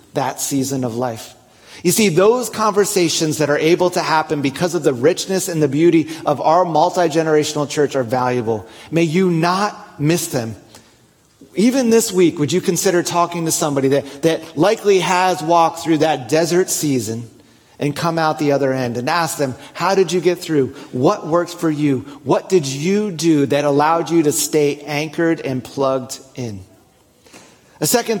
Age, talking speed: 30-49, 175 wpm